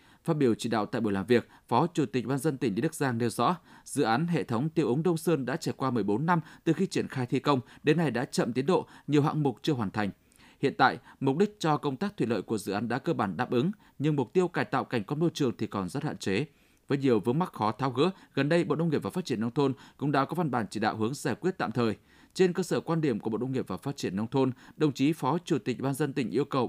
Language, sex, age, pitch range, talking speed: Vietnamese, male, 20-39, 120-165 Hz, 300 wpm